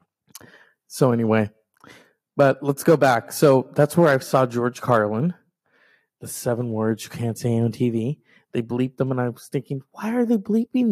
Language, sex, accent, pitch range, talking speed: English, male, American, 115-145 Hz, 175 wpm